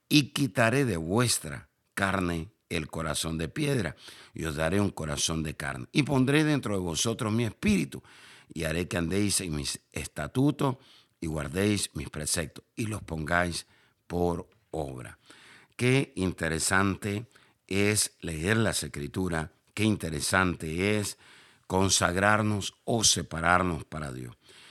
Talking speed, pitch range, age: 130 wpm, 80-105 Hz, 60-79